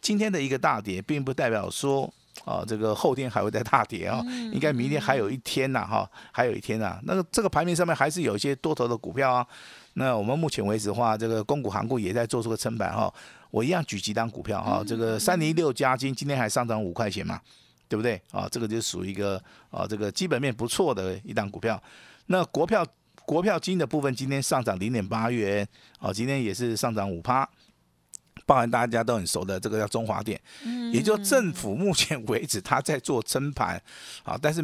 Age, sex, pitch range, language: 50-69, male, 110-145 Hz, Chinese